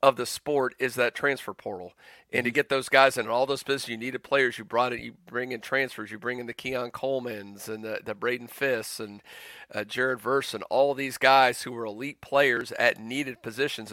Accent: American